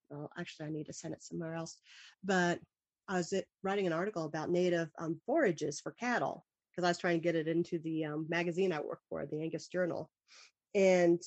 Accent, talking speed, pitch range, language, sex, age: American, 210 wpm, 170-220 Hz, English, female, 40-59